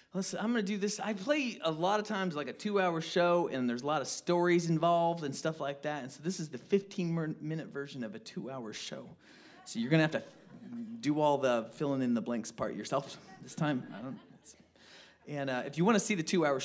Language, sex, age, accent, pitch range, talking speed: English, male, 30-49, American, 130-190 Hz, 230 wpm